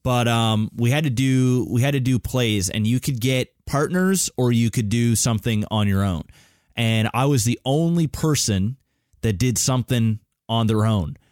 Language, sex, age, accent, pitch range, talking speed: English, male, 20-39, American, 110-135 Hz, 190 wpm